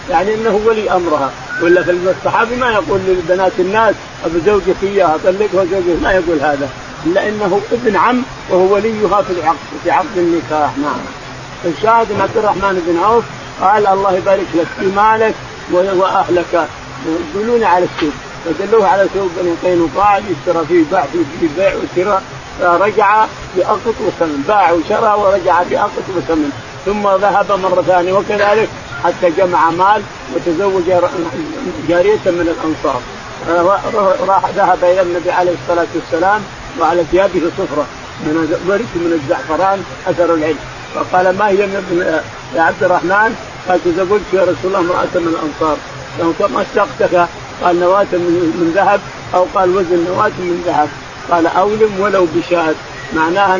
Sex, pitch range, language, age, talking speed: male, 170-200 Hz, Arabic, 50-69, 140 wpm